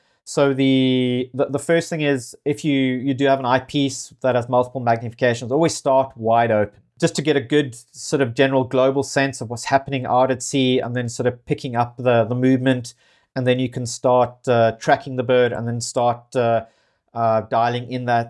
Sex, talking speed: male, 205 wpm